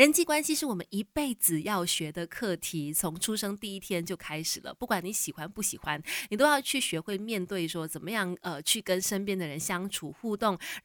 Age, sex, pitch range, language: 20-39, female, 175-225 Hz, Chinese